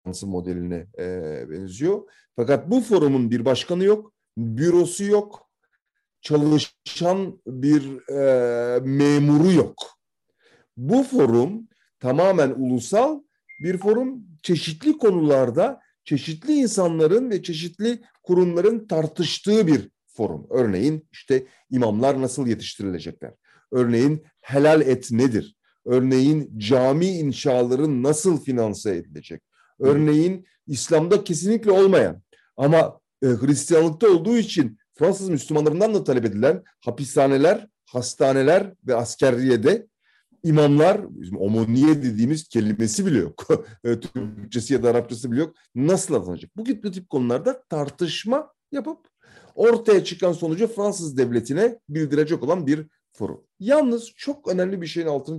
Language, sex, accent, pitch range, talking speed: Turkish, male, native, 125-195 Hz, 105 wpm